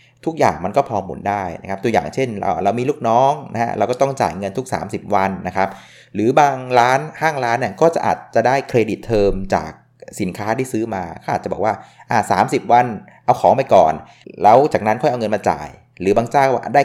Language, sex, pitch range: Thai, male, 100-135 Hz